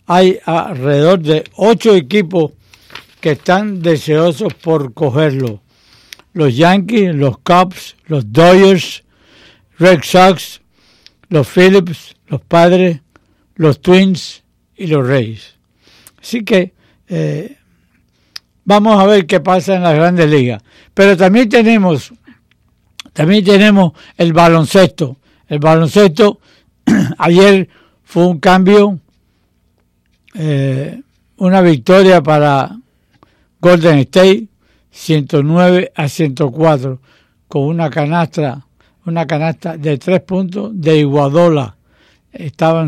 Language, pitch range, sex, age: English, 145-185 Hz, male, 60-79